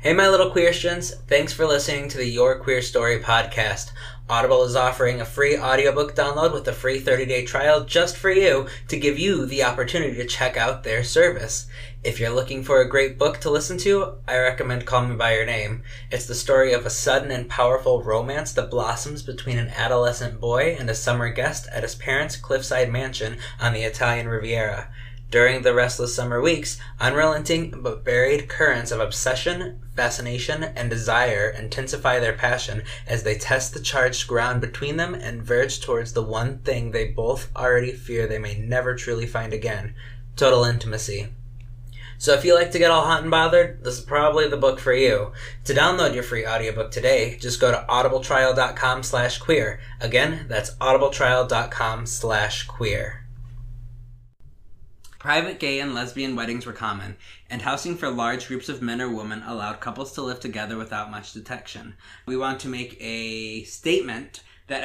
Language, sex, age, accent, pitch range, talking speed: English, male, 20-39, American, 115-135 Hz, 180 wpm